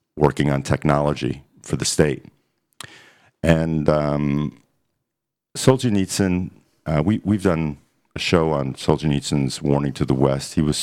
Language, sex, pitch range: English, male, 70-95 Hz